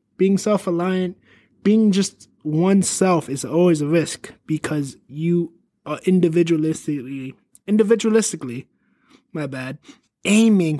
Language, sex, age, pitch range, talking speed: English, male, 20-39, 145-180 Hz, 100 wpm